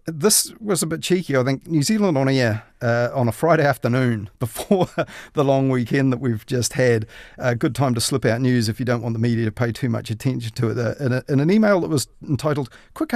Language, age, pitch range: English, 40-59, 115-130 Hz